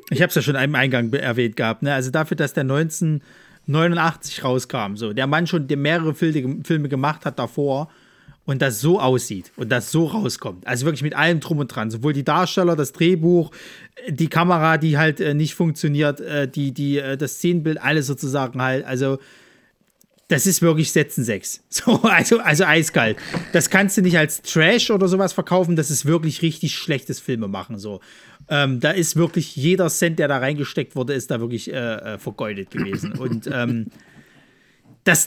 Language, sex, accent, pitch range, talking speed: German, male, German, 130-170 Hz, 185 wpm